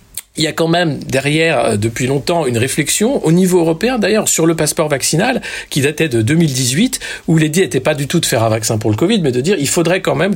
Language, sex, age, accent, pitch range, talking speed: French, male, 50-69, French, 120-175 Hz, 245 wpm